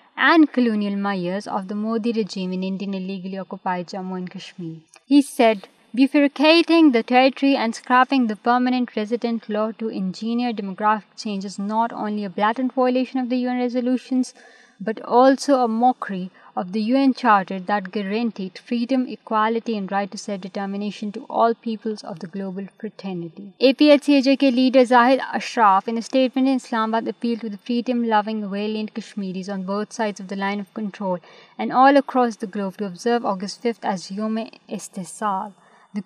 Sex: female